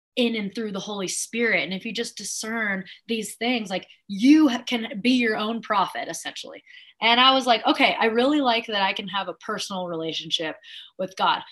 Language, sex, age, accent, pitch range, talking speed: English, female, 20-39, American, 180-240 Hz, 200 wpm